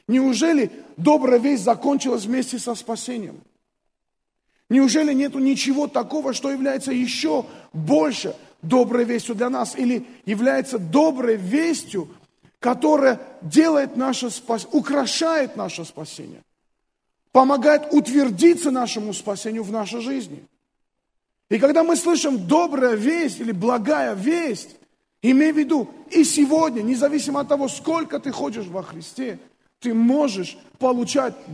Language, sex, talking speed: Russian, male, 120 wpm